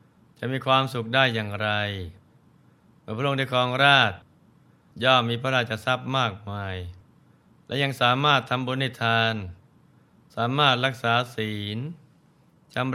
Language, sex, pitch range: Thai, male, 110-140 Hz